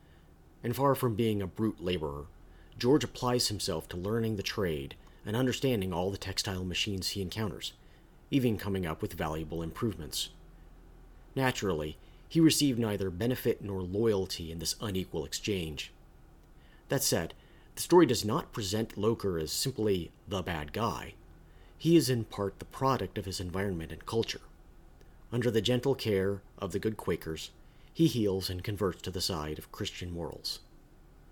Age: 40-59